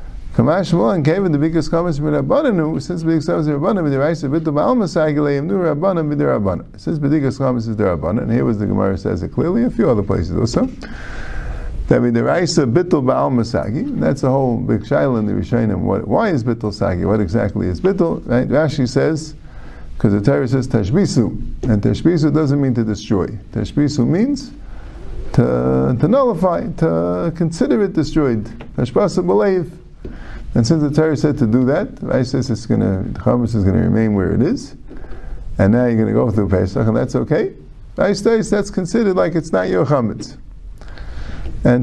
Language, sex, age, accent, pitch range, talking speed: English, male, 50-69, American, 105-155 Hz, 175 wpm